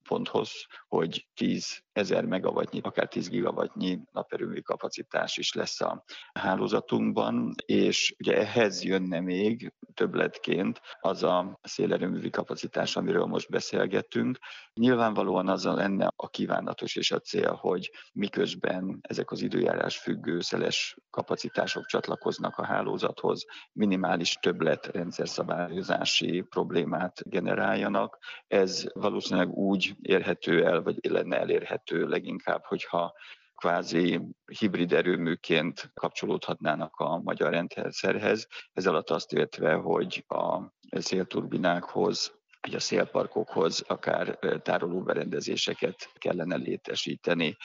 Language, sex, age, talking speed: Hungarian, male, 50-69, 100 wpm